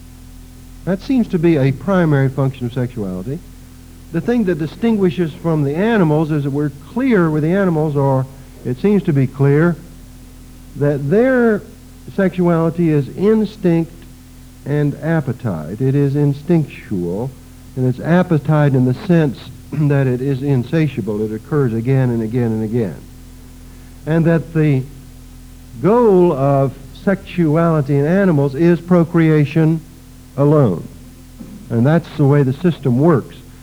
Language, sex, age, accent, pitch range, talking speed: English, male, 60-79, American, 125-165 Hz, 130 wpm